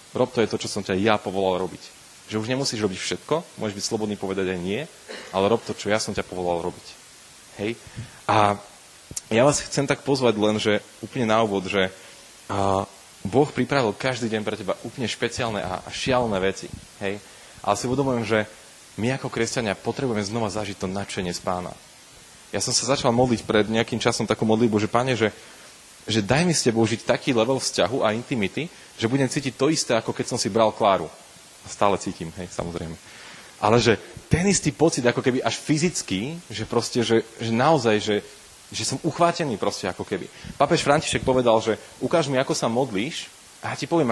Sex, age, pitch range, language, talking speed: male, 30-49, 105-130 Hz, Slovak, 195 wpm